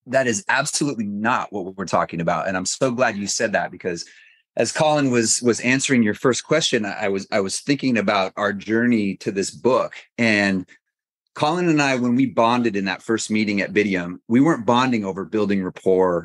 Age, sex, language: 30-49, male, English